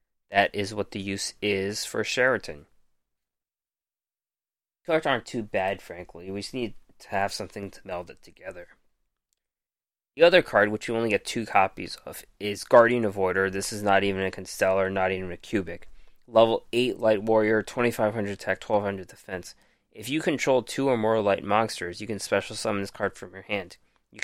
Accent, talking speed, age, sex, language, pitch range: American, 180 wpm, 20-39, male, English, 95-115 Hz